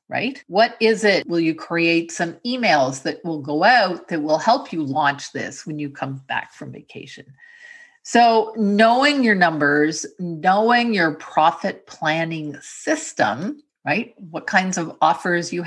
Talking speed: 155 wpm